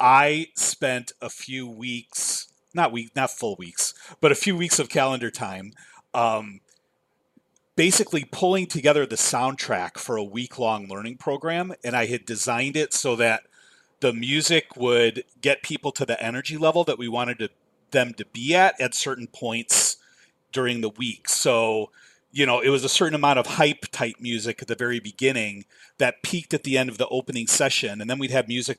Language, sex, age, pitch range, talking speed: English, male, 30-49, 120-150 Hz, 185 wpm